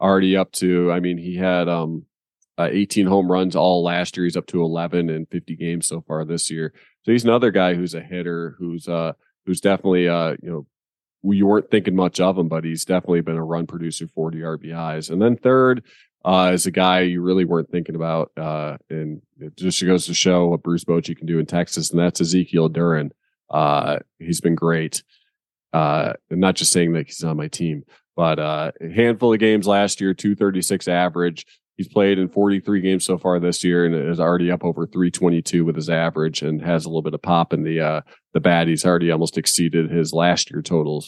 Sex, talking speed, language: male, 220 wpm, English